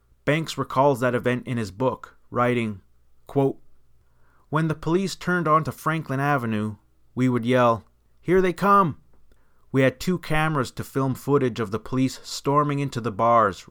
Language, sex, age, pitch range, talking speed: English, male, 30-49, 110-135 Hz, 160 wpm